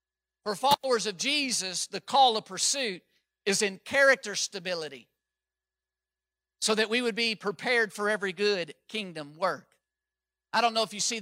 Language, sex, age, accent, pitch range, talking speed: English, male, 50-69, American, 185-255 Hz, 155 wpm